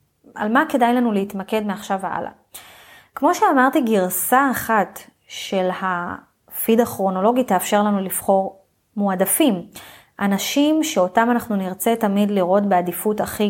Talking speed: 115 wpm